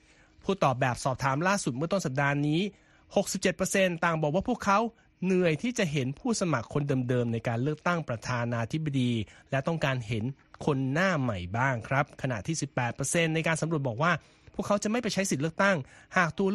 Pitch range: 130-190 Hz